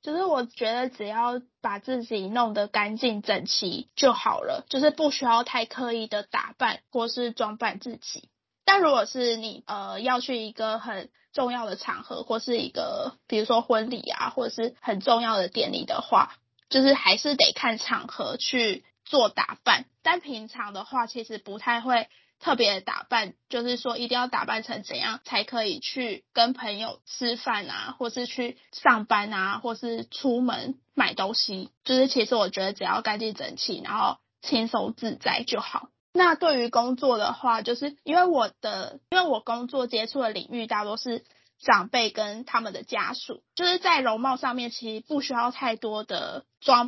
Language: Chinese